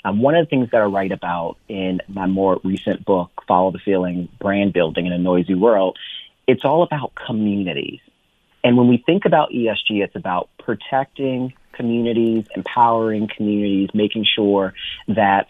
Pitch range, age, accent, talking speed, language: 95-115 Hz, 30-49, American, 165 wpm, English